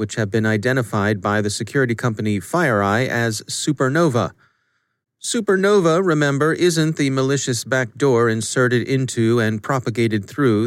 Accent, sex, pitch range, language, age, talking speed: American, male, 110-140 Hz, English, 30-49, 125 wpm